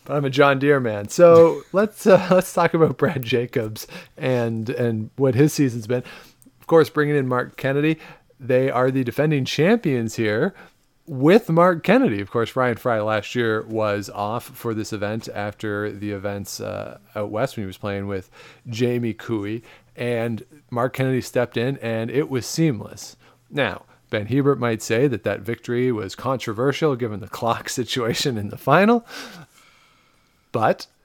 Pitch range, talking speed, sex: 110-140 Hz, 165 wpm, male